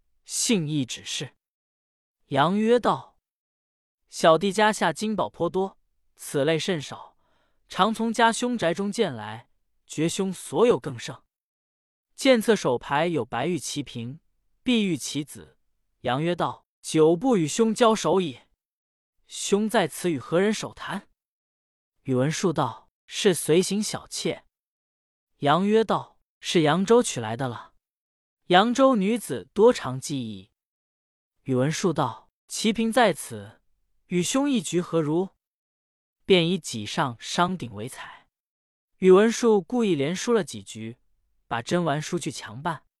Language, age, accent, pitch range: Chinese, 20-39, native, 125-205 Hz